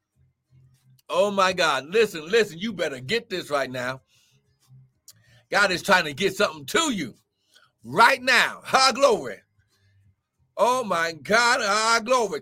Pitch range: 165-275 Hz